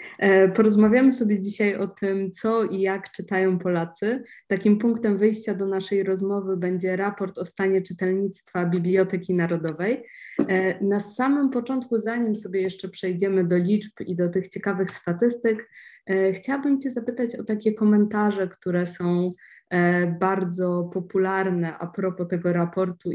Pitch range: 180-210 Hz